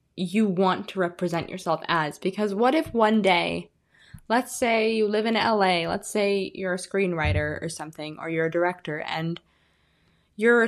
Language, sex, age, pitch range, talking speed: English, female, 10-29, 170-220 Hz, 170 wpm